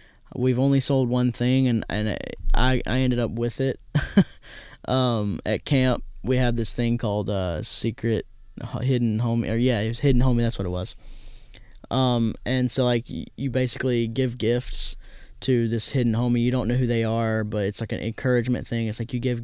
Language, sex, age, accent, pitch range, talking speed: English, male, 10-29, American, 115-135 Hz, 200 wpm